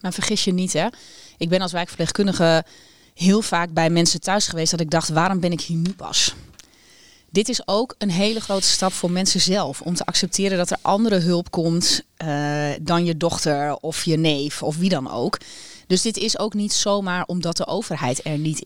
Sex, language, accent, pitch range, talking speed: female, Dutch, Dutch, 170-210 Hz, 210 wpm